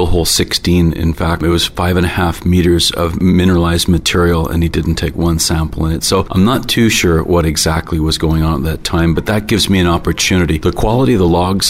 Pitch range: 85-95 Hz